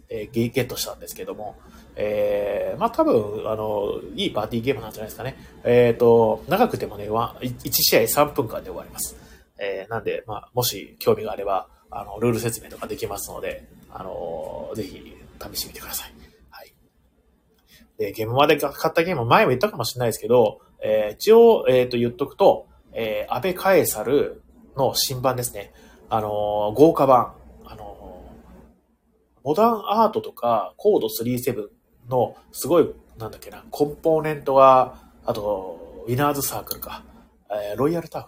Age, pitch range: 30-49, 110-165 Hz